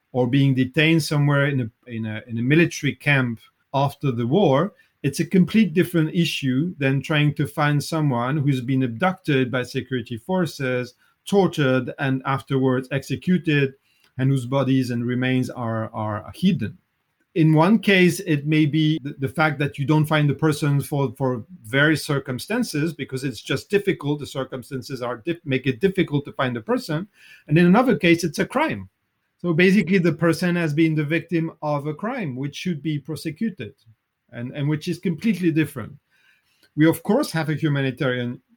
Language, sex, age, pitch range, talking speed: English, male, 40-59, 130-165 Hz, 175 wpm